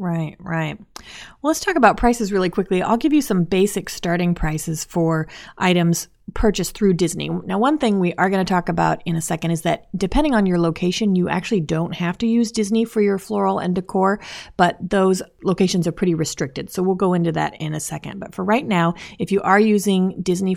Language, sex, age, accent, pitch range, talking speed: English, female, 30-49, American, 170-210 Hz, 215 wpm